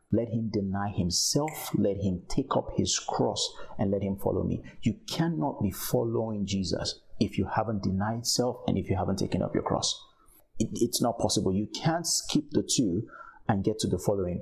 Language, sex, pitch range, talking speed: English, male, 100-130 Hz, 190 wpm